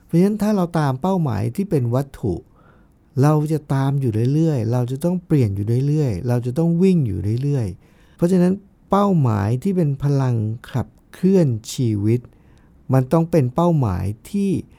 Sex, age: male, 60-79